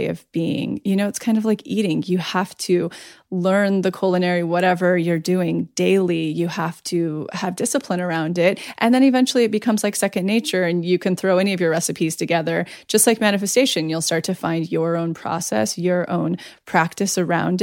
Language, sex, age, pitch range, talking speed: English, female, 20-39, 175-215 Hz, 195 wpm